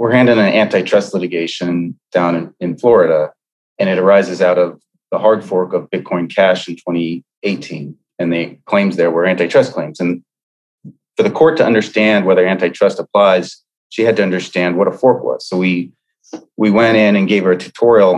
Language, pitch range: English, 90-110 Hz